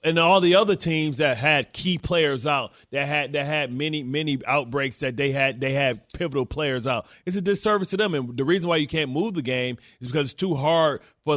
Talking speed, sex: 240 wpm, male